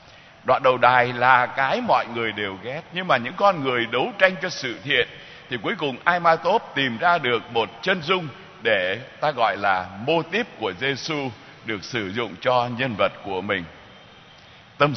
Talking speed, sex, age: 190 wpm, male, 60-79